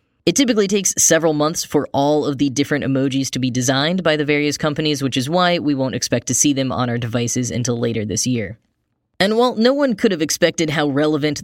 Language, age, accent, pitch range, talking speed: English, 10-29, American, 130-165 Hz, 225 wpm